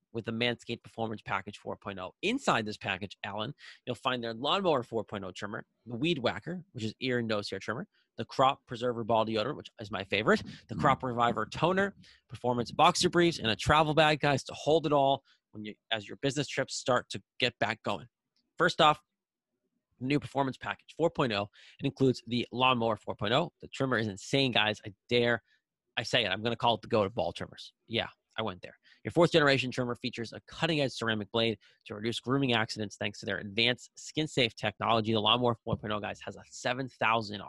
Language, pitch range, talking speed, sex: English, 110-130 Hz, 195 wpm, male